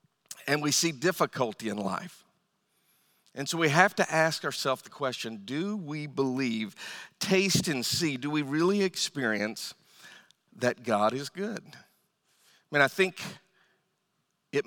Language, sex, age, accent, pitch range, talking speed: English, male, 50-69, American, 130-165 Hz, 140 wpm